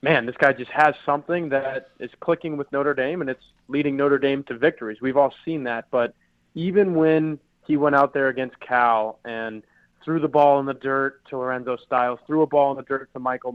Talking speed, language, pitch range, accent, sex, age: 220 wpm, English, 125-150 Hz, American, male, 20-39